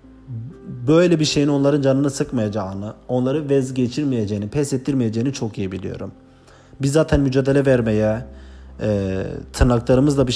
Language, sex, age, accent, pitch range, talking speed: Turkish, male, 40-59, native, 110-140 Hz, 115 wpm